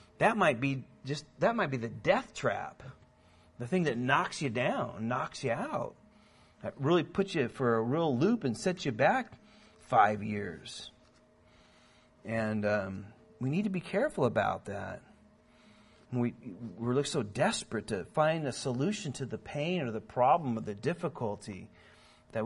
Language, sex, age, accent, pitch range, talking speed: Finnish, male, 40-59, American, 120-160 Hz, 165 wpm